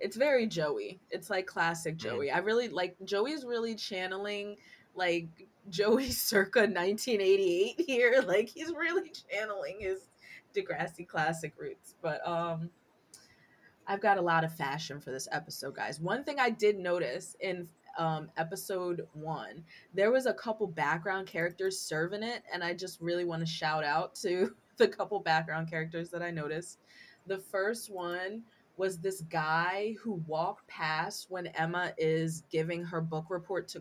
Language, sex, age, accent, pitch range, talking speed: English, female, 20-39, American, 160-205 Hz, 155 wpm